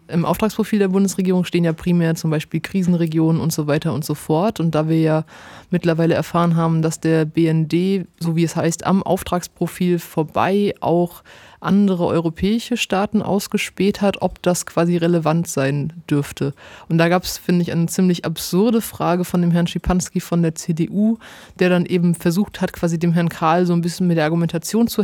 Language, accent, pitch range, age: German, German, 165-185 Hz, 20-39